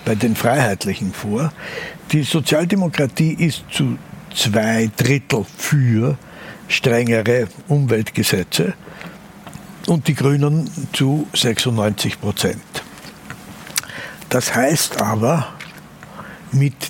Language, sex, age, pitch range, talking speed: German, male, 60-79, 115-160 Hz, 80 wpm